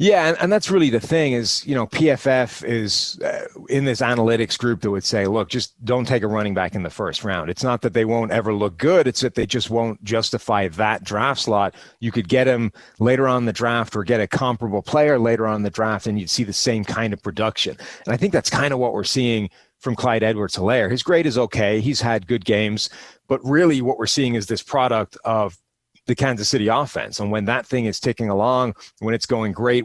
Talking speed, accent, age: 235 wpm, American, 30-49